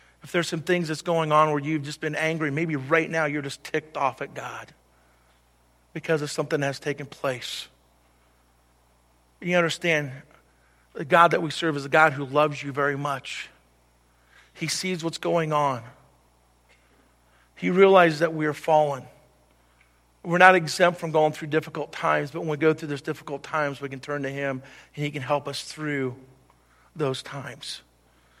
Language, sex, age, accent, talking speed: English, male, 50-69, American, 175 wpm